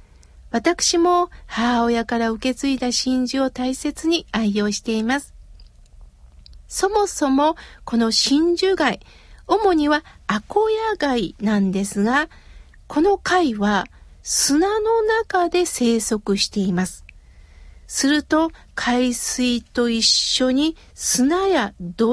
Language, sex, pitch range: Japanese, female, 225-335 Hz